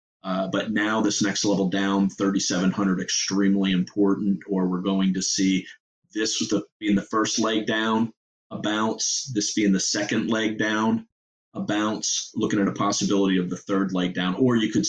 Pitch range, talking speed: 95-110 Hz, 180 wpm